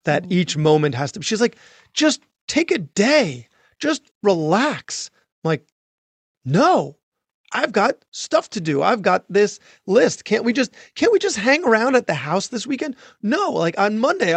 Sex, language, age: male, English, 30-49